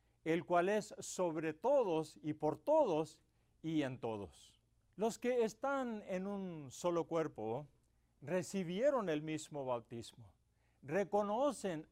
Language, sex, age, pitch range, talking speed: English, male, 50-69, 155-215 Hz, 115 wpm